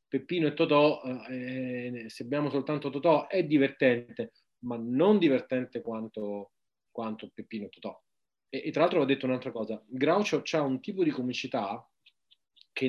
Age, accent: 30-49, native